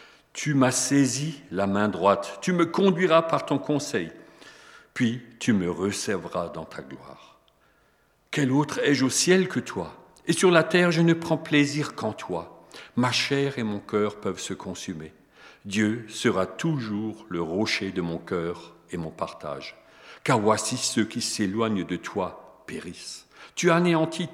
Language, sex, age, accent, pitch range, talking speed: French, male, 50-69, French, 90-130 Hz, 160 wpm